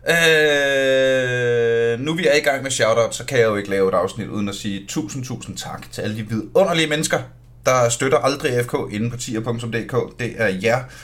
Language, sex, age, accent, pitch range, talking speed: Danish, male, 30-49, native, 115-155 Hz, 195 wpm